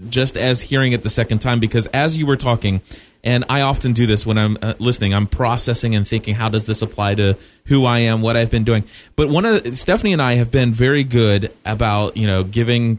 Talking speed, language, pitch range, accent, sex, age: 235 wpm, English, 110-135 Hz, American, male, 30-49